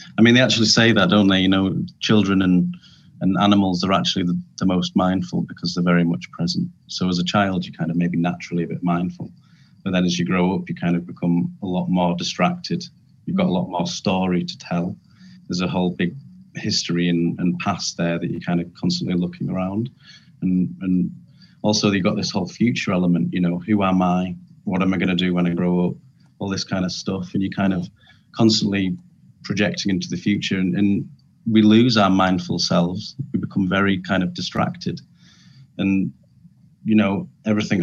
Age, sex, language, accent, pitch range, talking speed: 30-49, male, English, British, 90-105 Hz, 205 wpm